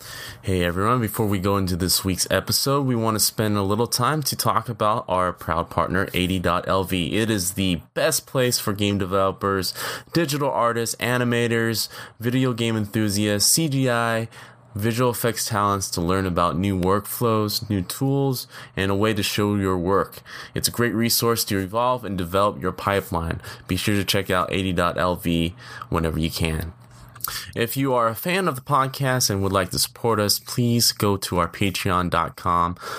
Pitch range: 95-115 Hz